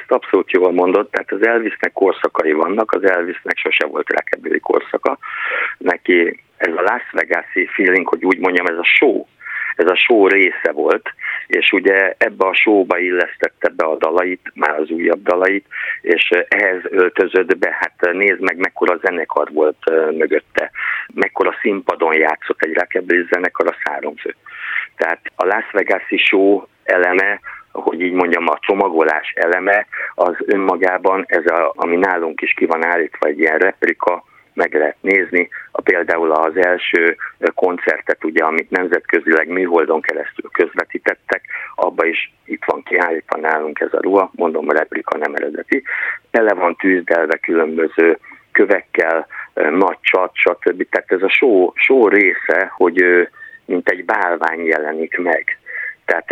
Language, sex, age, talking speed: Hungarian, male, 50-69, 145 wpm